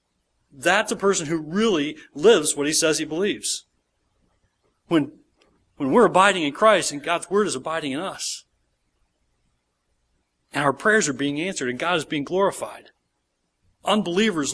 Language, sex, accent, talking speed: English, male, American, 150 wpm